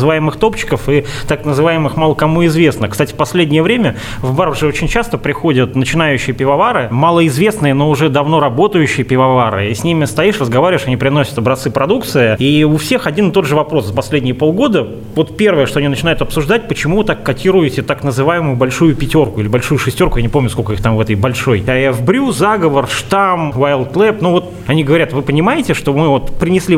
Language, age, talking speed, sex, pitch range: Russian, 20-39, 190 wpm, male, 135-170 Hz